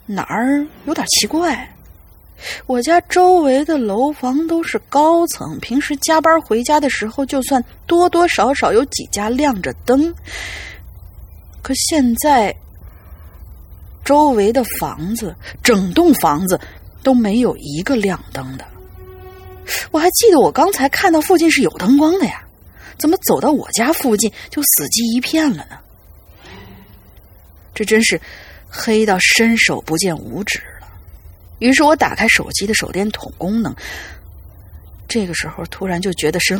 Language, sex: Chinese, female